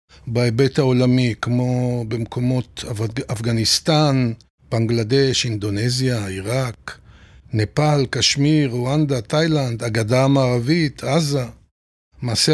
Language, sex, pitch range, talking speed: Hebrew, male, 125-155 Hz, 80 wpm